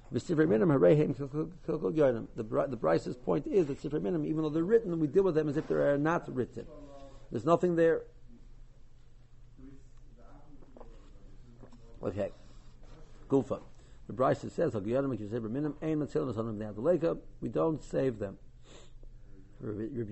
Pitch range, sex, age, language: 120-150 Hz, male, 60-79, English